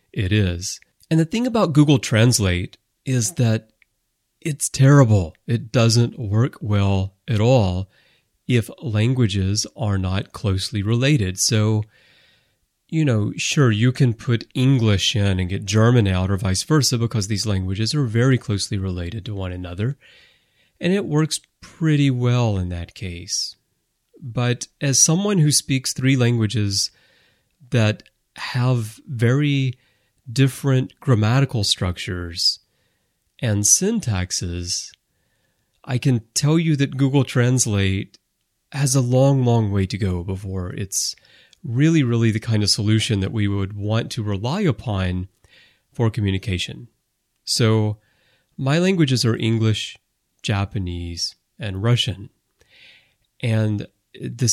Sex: male